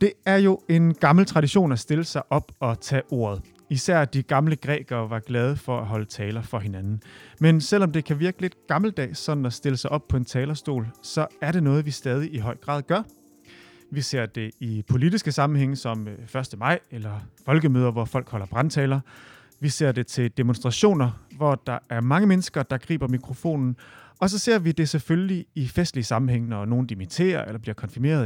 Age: 30-49